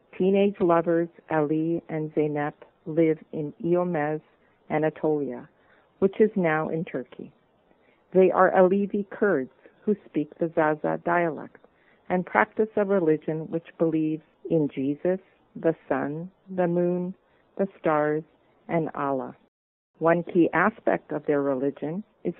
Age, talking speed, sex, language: 50-69, 125 wpm, female, English